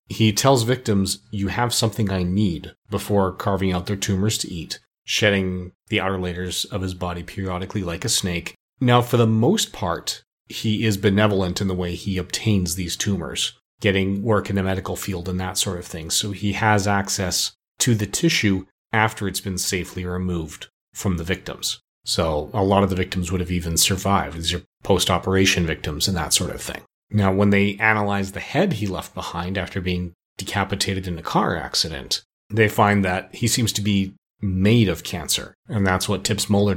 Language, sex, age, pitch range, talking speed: English, male, 30-49, 95-105 Hz, 190 wpm